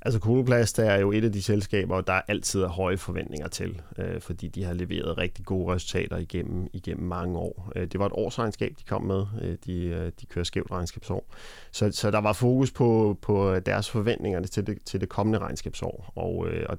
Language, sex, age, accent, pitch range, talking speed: Danish, male, 30-49, native, 90-105 Hz, 195 wpm